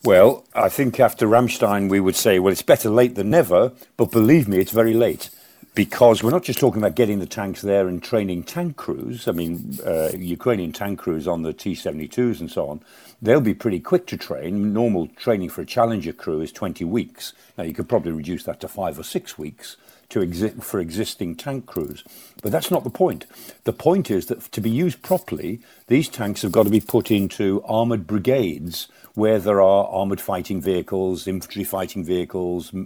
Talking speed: 195 wpm